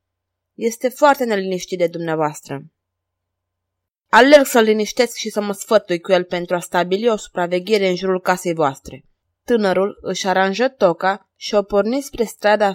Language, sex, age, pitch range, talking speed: Romanian, female, 20-39, 185-230 Hz, 150 wpm